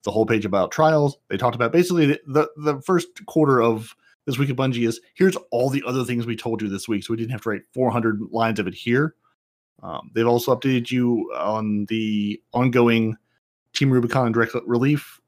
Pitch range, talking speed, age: 115-145 Hz, 205 wpm, 30-49